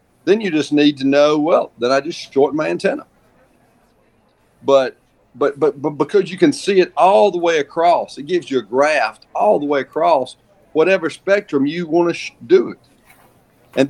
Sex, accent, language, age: male, American, English, 40-59